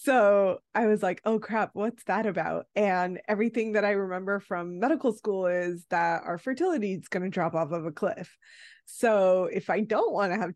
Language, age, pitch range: English, 20-39, 180-240 Hz